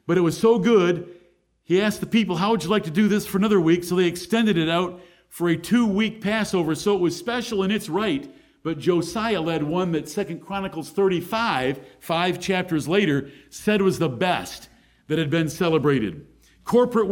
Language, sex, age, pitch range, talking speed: English, male, 50-69, 170-215 Hz, 195 wpm